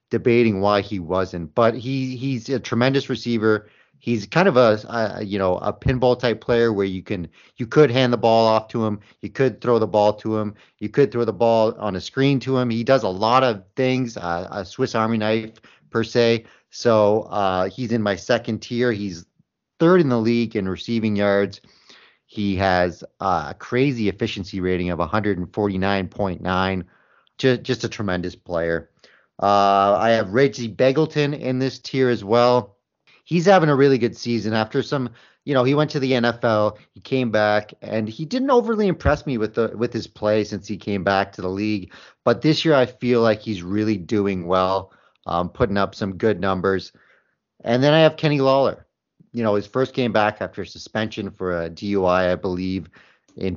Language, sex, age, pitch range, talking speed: English, male, 30-49, 100-125 Hz, 195 wpm